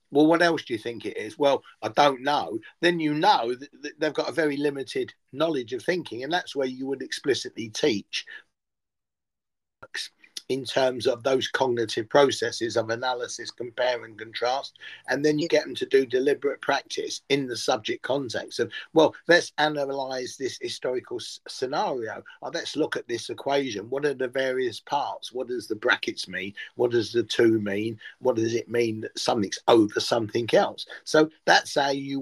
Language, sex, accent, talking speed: English, male, British, 175 wpm